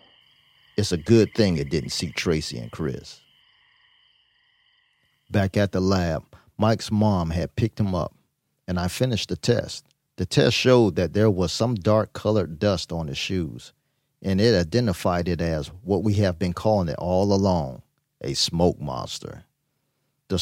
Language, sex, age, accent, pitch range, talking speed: English, male, 50-69, American, 90-120 Hz, 160 wpm